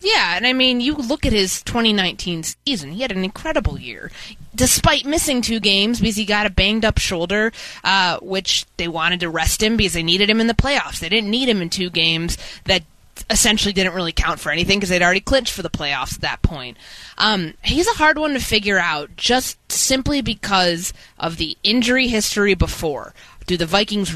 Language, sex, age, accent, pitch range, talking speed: English, female, 20-39, American, 175-225 Hz, 205 wpm